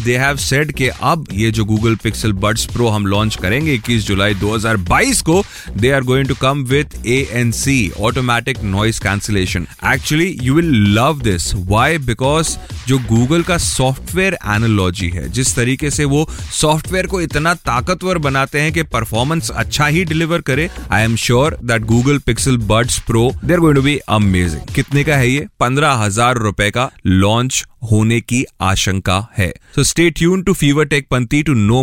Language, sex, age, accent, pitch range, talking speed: Hindi, male, 30-49, native, 105-150 Hz, 145 wpm